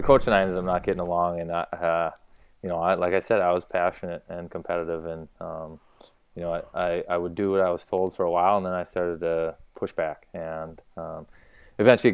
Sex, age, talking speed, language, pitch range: male, 20-39, 230 wpm, English, 85-95 Hz